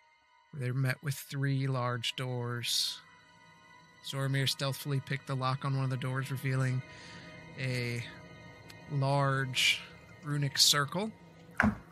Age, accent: 20-39, American